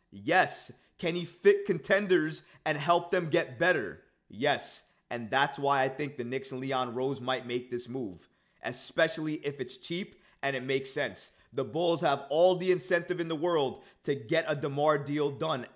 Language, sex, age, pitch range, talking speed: English, male, 30-49, 135-170 Hz, 185 wpm